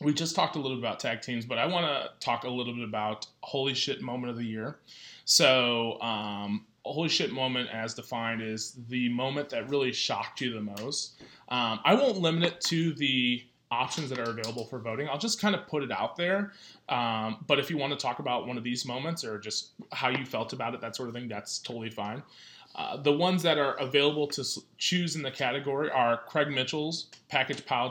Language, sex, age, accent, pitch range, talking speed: English, male, 20-39, American, 115-145 Hz, 220 wpm